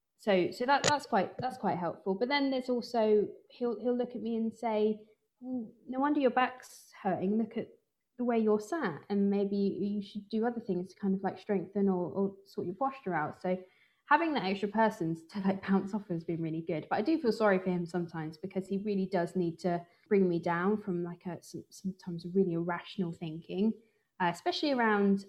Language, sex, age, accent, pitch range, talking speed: English, female, 20-39, British, 180-225 Hz, 210 wpm